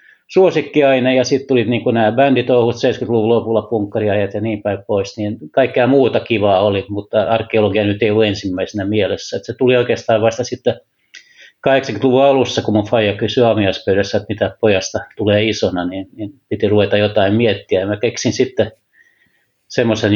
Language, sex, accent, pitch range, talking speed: Finnish, male, native, 105-120 Hz, 160 wpm